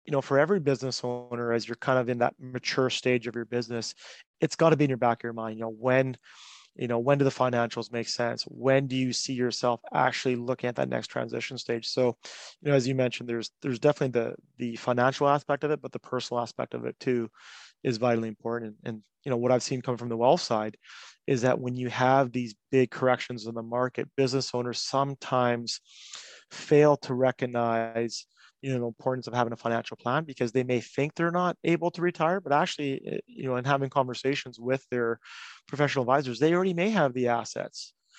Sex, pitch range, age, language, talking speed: male, 120-135 Hz, 30-49, English, 220 wpm